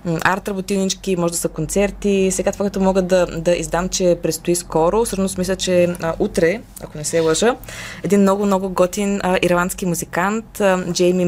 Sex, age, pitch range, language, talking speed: female, 20-39, 170-195 Hz, Bulgarian, 175 wpm